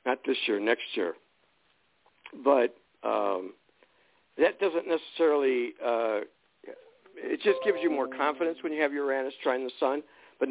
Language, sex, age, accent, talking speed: English, male, 60-79, American, 145 wpm